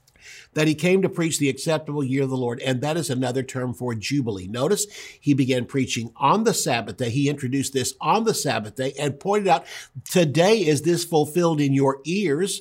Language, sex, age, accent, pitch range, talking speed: English, male, 50-69, American, 130-165 Hz, 205 wpm